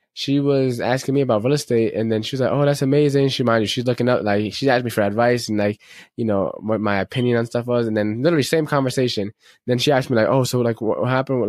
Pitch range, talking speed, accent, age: 110-140 Hz, 270 wpm, American, 20-39